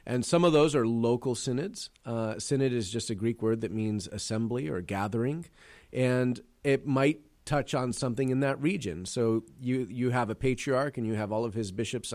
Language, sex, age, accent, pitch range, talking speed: English, male, 40-59, American, 105-130 Hz, 205 wpm